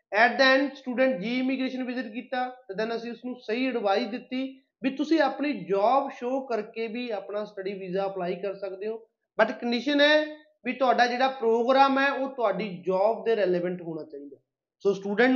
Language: Punjabi